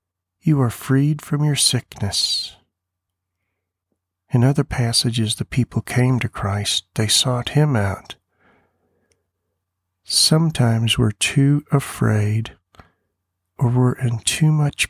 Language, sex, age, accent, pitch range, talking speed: English, male, 50-69, American, 95-135 Hz, 110 wpm